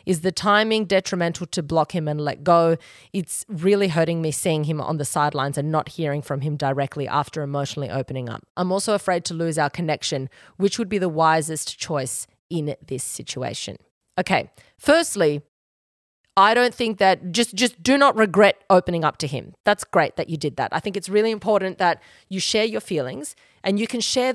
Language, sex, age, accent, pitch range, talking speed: English, female, 30-49, Australian, 155-210 Hz, 195 wpm